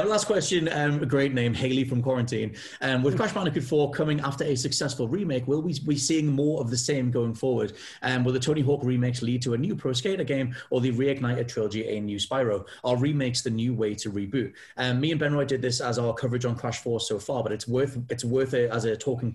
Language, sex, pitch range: English, male, 110-130 Hz